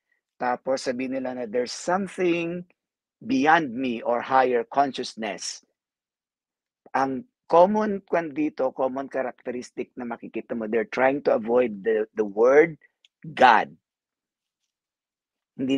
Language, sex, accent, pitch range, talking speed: Filipino, male, native, 115-155 Hz, 105 wpm